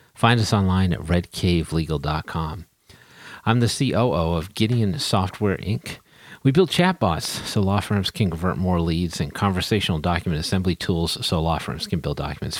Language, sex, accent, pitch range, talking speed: English, male, American, 80-110 Hz, 155 wpm